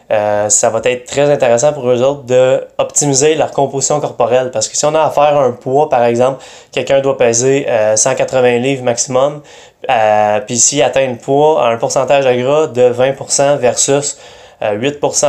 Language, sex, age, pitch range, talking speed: French, male, 20-39, 120-140 Hz, 180 wpm